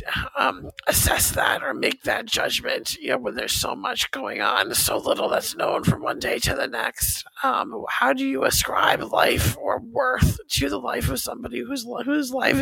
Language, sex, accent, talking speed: English, male, American, 195 wpm